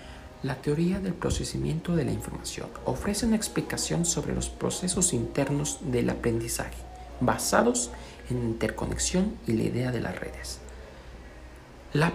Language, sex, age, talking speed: Spanish, male, 50-69, 135 wpm